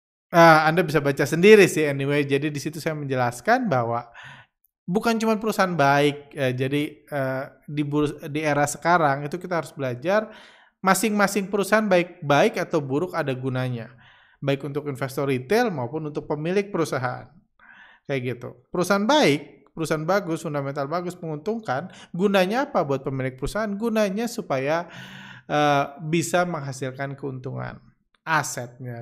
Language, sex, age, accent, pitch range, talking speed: Indonesian, male, 20-39, native, 130-170 Hz, 125 wpm